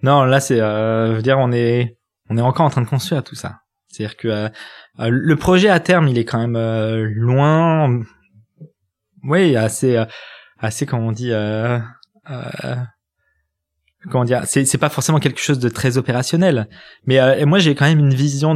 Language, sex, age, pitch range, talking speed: French, male, 20-39, 115-155 Hz, 185 wpm